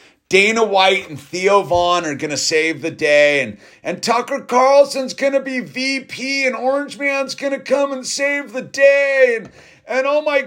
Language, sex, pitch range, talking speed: English, male, 175-265 Hz, 190 wpm